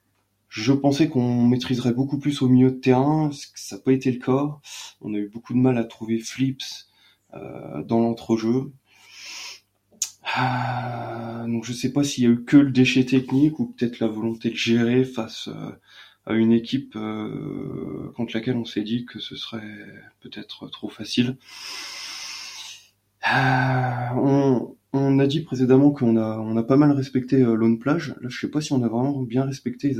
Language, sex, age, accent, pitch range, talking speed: French, male, 20-39, French, 115-135 Hz, 190 wpm